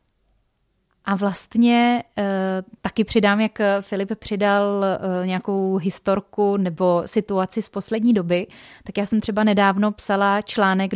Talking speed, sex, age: 115 wpm, female, 20-39